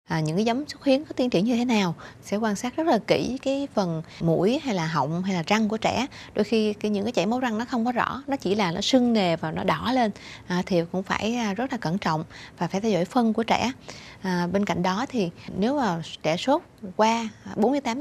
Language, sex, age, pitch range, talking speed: Vietnamese, female, 20-39, 175-225 Hz, 255 wpm